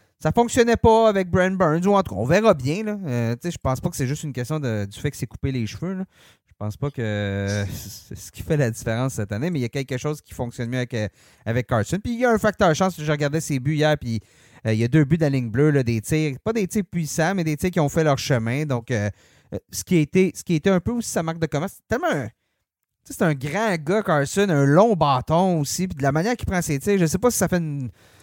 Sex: male